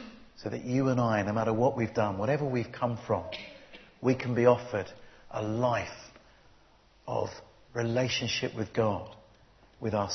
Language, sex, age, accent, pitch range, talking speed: English, male, 50-69, British, 110-130 Hz, 155 wpm